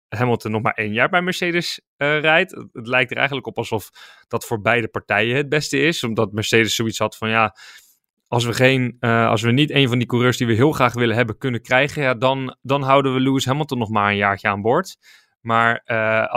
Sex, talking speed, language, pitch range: male, 225 wpm, Dutch, 110-145 Hz